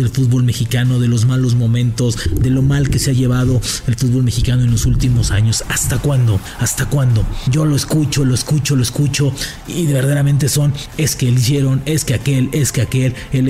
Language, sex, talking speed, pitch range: English, male, 205 wpm, 120-140 Hz